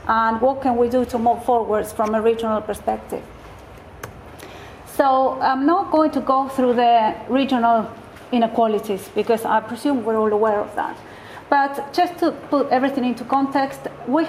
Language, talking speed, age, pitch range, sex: English, 160 wpm, 40-59, 230-280 Hz, female